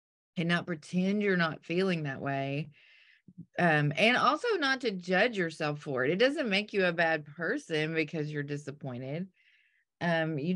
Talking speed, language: 165 wpm, English